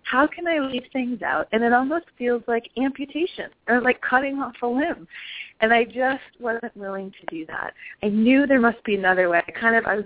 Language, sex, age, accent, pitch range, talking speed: English, female, 30-49, American, 195-260 Hz, 215 wpm